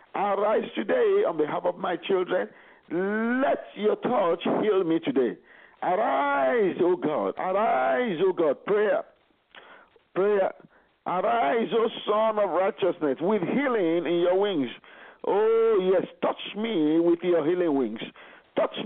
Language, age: English, 50-69